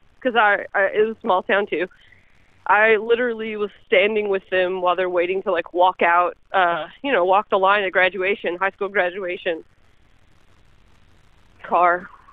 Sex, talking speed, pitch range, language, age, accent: female, 165 wpm, 190-255 Hz, English, 20-39, American